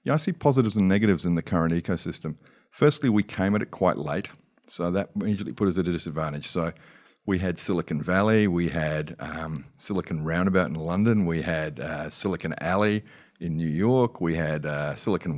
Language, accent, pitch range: English, Australian, 85-105 Hz